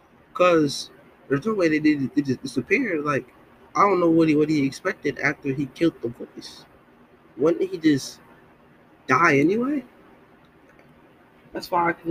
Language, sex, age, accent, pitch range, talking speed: English, male, 20-39, American, 130-150 Hz, 145 wpm